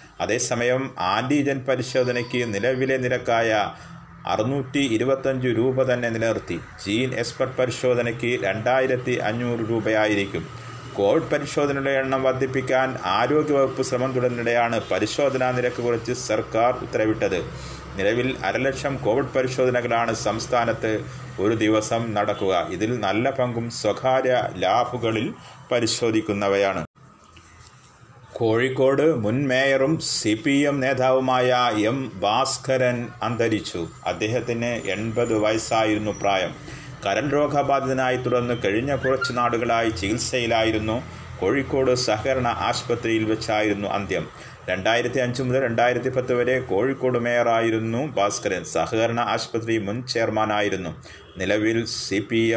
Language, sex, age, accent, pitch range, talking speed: Malayalam, male, 30-49, native, 110-130 Hz, 90 wpm